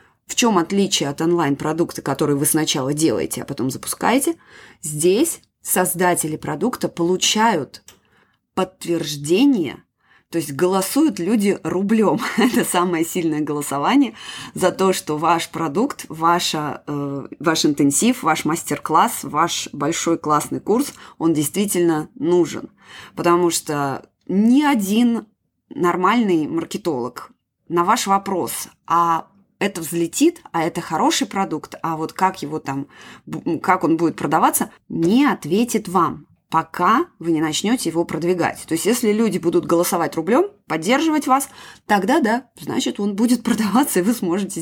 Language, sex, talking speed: Russian, female, 130 wpm